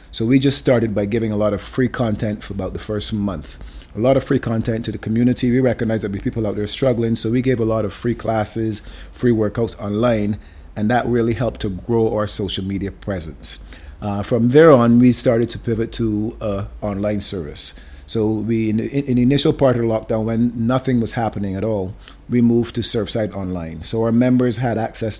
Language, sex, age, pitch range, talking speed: English, male, 30-49, 100-115 Hz, 215 wpm